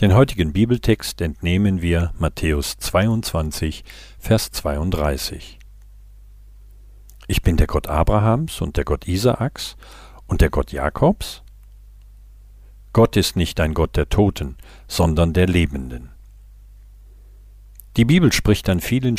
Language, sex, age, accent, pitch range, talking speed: German, male, 50-69, German, 85-105 Hz, 115 wpm